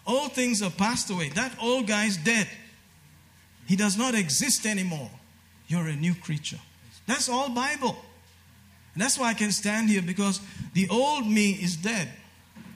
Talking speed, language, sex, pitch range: 165 wpm, English, male, 120-190 Hz